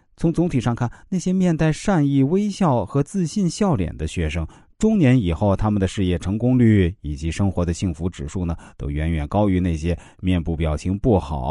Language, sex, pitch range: Chinese, male, 85-120 Hz